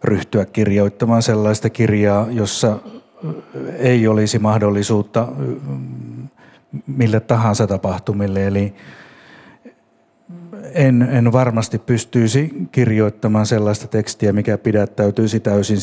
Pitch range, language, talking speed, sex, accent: 105-125 Hz, Finnish, 85 wpm, male, native